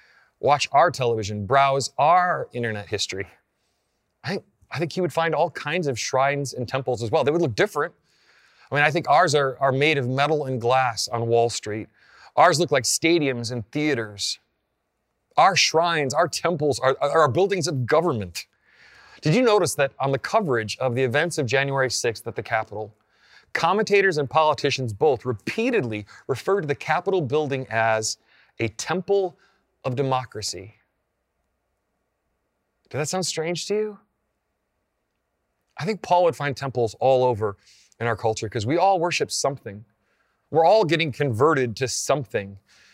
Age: 30-49